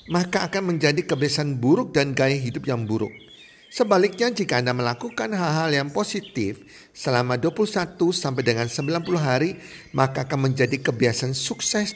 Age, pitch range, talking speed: 50-69, 120-170 Hz, 140 wpm